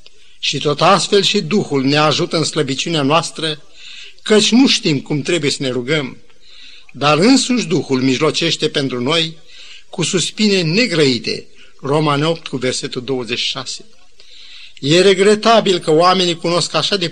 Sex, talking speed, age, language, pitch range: male, 135 wpm, 50-69, Romanian, 150-205 Hz